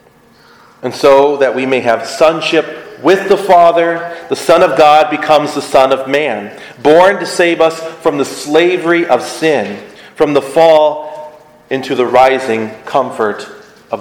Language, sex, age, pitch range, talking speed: English, male, 40-59, 120-155 Hz, 155 wpm